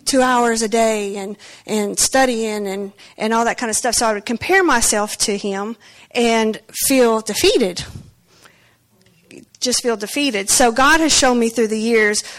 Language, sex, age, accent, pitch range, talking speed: English, female, 40-59, American, 210-255 Hz, 170 wpm